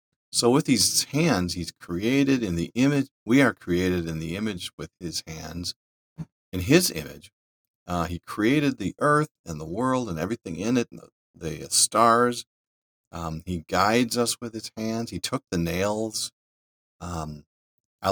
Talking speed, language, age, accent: 160 wpm, English, 40-59, American